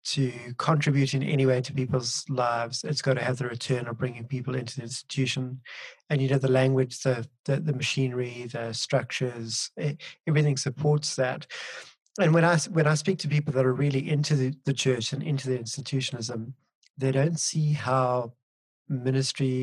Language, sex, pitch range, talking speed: English, male, 125-150 Hz, 180 wpm